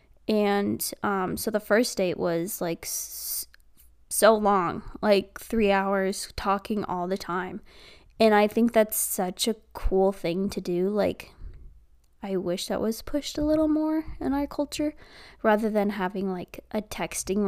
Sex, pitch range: female, 190-240 Hz